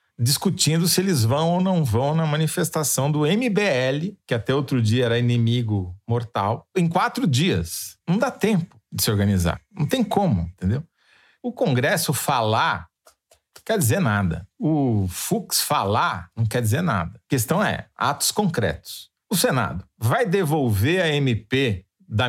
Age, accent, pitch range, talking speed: 40-59, Brazilian, 100-145 Hz, 155 wpm